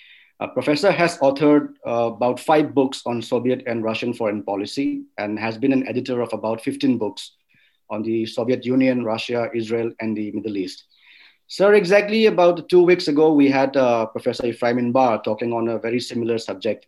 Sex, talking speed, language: male, 180 wpm, English